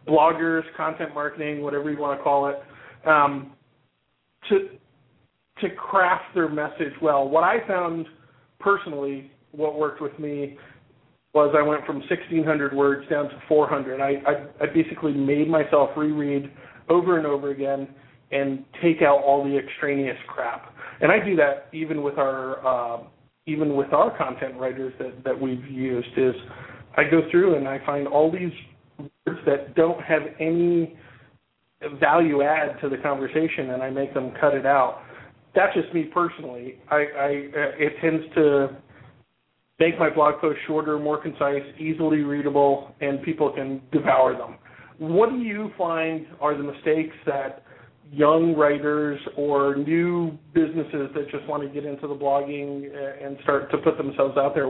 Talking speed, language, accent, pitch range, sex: 160 wpm, English, American, 140-155 Hz, male